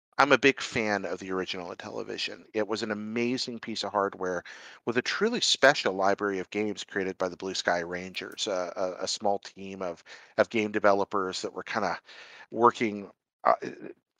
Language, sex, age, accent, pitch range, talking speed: English, male, 40-59, American, 90-110 Hz, 180 wpm